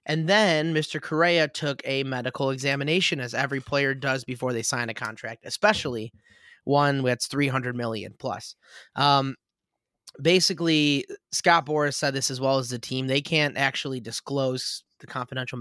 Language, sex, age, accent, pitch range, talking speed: English, male, 20-39, American, 125-155 Hz, 155 wpm